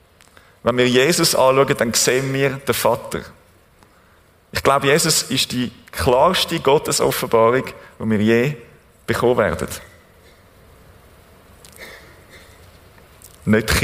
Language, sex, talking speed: German, male, 95 wpm